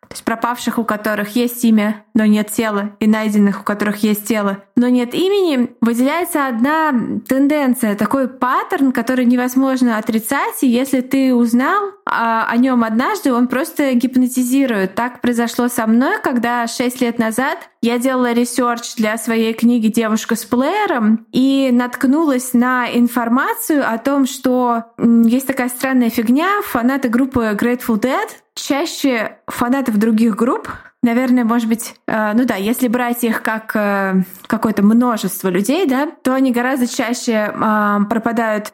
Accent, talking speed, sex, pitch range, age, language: native, 145 wpm, female, 215-255 Hz, 20-39, Russian